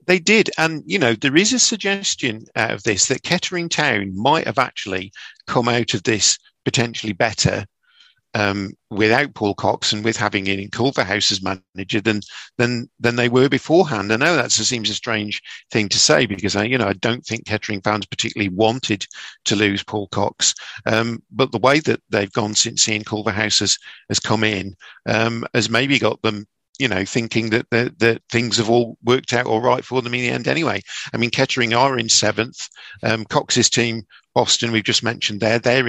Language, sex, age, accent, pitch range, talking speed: English, male, 50-69, British, 105-125 Hz, 195 wpm